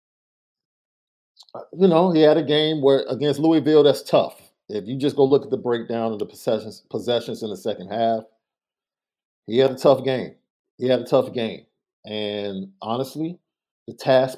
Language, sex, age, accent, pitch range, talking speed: English, male, 50-69, American, 110-150 Hz, 170 wpm